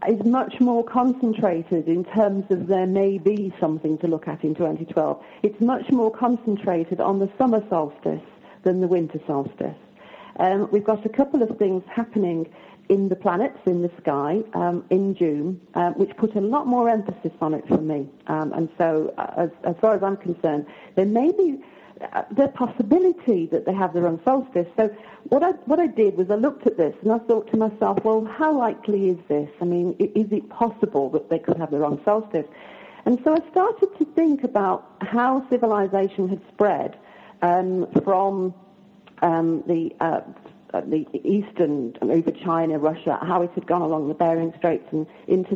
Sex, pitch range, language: female, 165-220 Hz, English